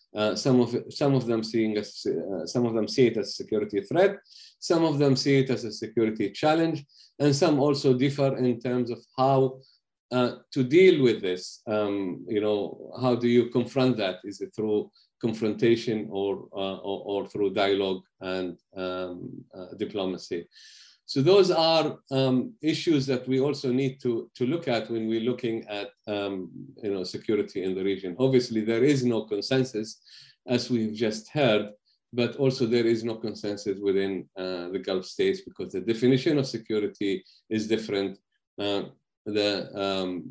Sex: male